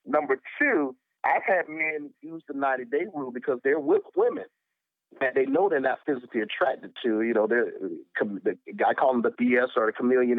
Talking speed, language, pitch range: 180 wpm, English, 135-225 Hz